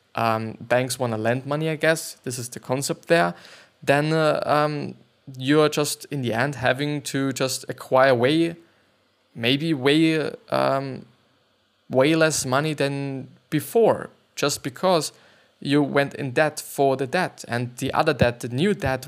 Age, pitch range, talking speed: 20-39, 125-155 Hz, 160 wpm